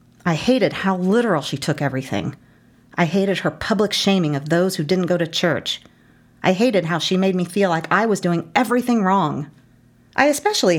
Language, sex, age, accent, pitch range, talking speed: English, female, 40-59, American, 155-245 Hz, 190 wpm